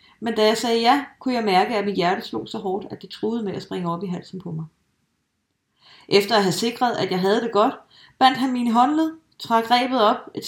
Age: 30-49